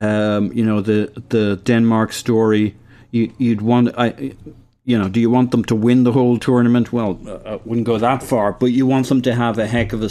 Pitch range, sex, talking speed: 110-125 Hz, male, 225 wpm